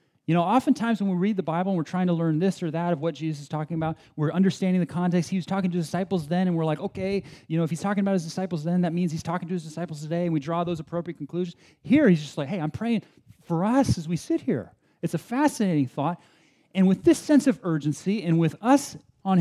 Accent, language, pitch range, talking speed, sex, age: American, English, 130-180 Hz, 270 wpm, male, 30-49